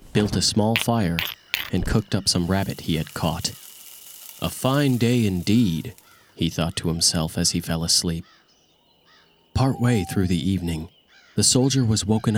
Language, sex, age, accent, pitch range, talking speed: English, male, 30-49, American, 85-105 Hz, 155 wpm